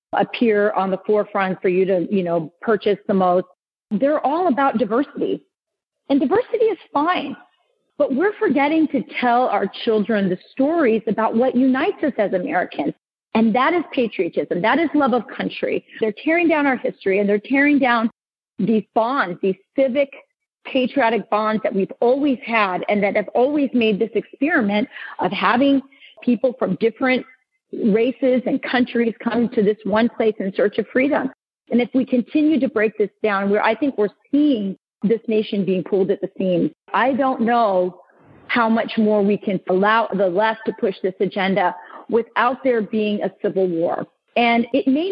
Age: 40-59